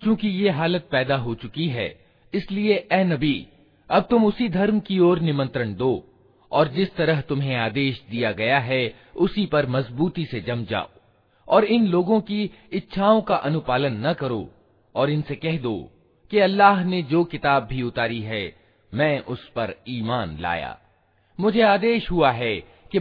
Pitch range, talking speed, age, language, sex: 115-180 Hz, 165 wpm, 40-59, Hindi, male